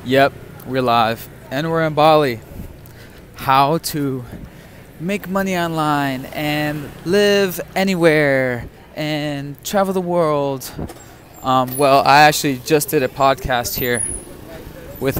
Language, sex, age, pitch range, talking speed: English, male, 20-39, 125-160 Hz, 115 wpm